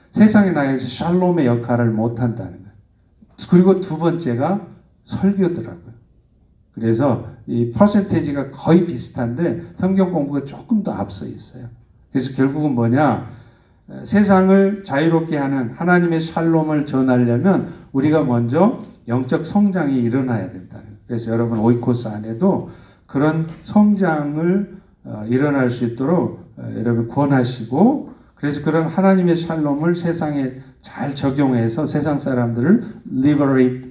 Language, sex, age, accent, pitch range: Korean, male, 50-69, native, 120-175 Hz